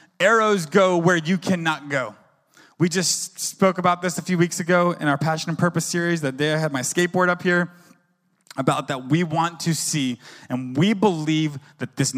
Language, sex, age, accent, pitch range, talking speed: English, male, 20-39, American, 170-220 Hz, 195 wpm